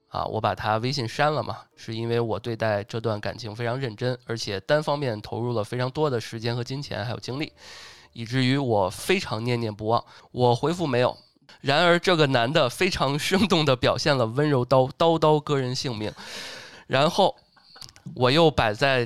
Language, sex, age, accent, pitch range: Chinese, male, 20-39, native, 115-145 Hz